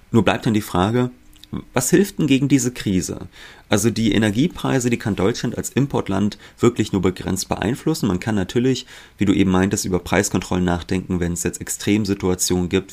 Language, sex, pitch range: German, male, 90-110 Hz